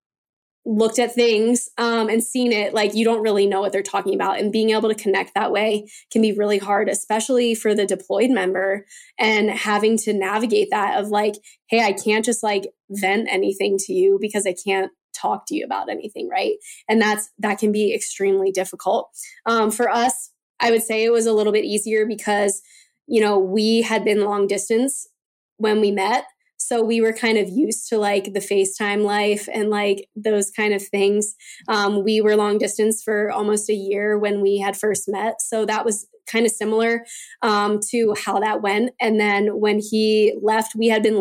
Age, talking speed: 10-29, 200 wpm